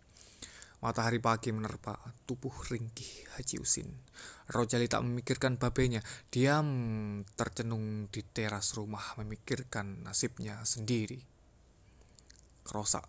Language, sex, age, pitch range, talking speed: Indonesian, male, 20-39, 105-120 Hz, 90 wpm